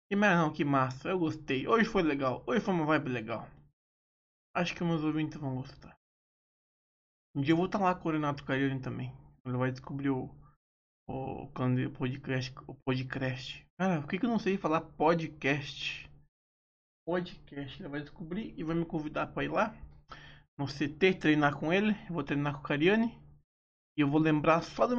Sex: male